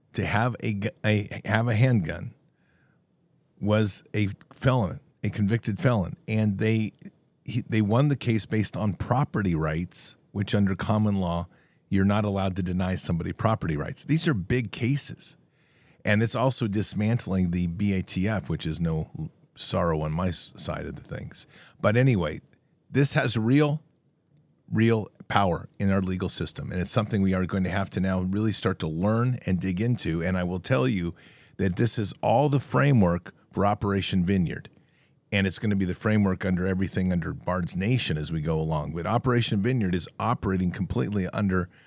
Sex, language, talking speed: male, English, 175 wpm